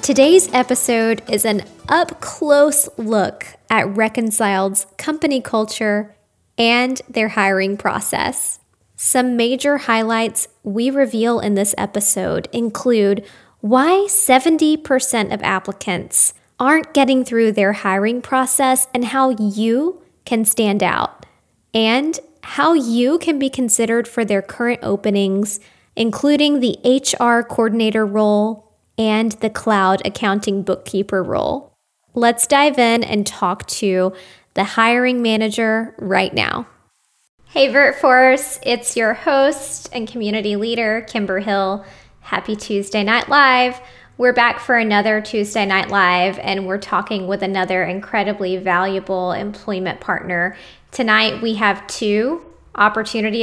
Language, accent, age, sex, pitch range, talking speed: English, American, 10-29, female, 205-255 Hz, 120 wpm